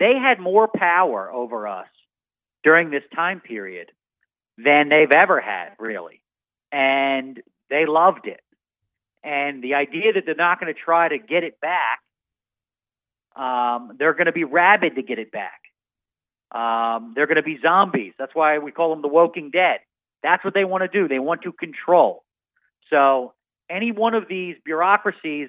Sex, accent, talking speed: male, American, 165 wpm